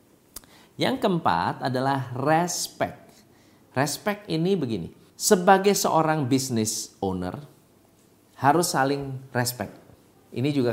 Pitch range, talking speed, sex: 105-165 Hz, 90 wpm, male